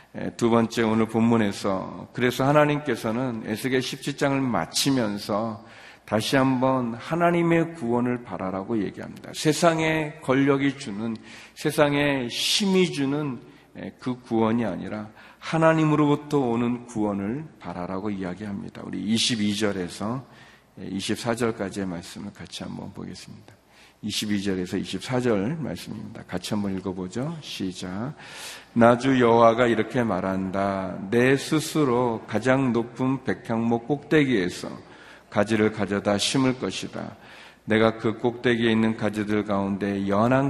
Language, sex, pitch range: Korean, male, 105-135 Hz